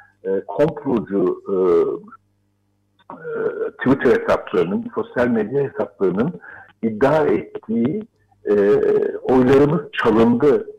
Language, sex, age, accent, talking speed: Turkish, male, 60-79, native, 65 wpm